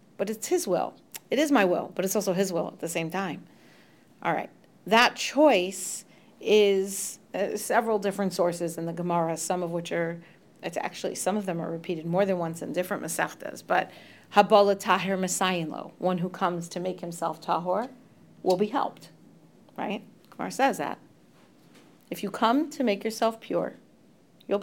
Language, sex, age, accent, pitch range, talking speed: English, female, 40-59, American, 175-215 Hz, 175 wpm